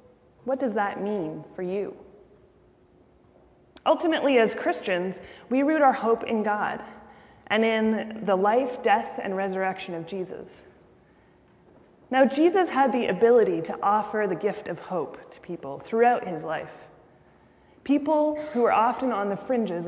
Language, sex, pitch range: English, female, 195-250 Hz